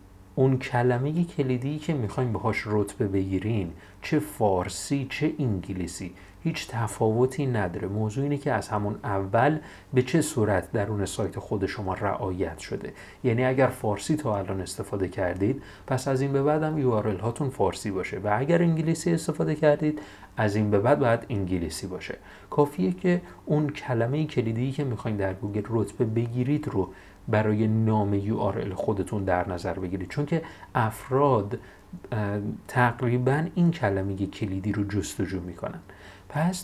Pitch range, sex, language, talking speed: 100-140 Hz, male, Persian, 145 wpm